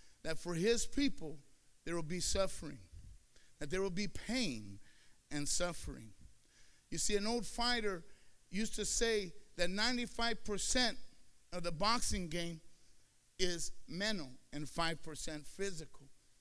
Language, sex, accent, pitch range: English, male, American, 155-230 Hz